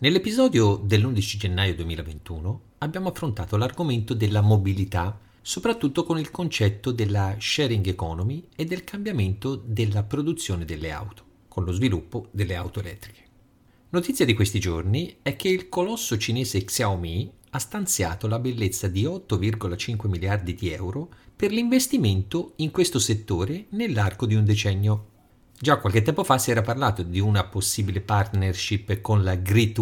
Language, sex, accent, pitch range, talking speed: Italian, male, native, 95-130 Hz, 145 wpm